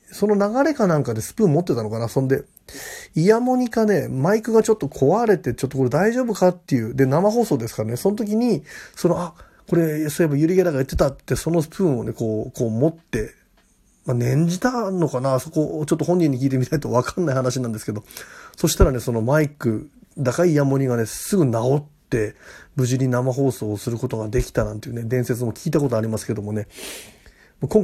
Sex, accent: male, native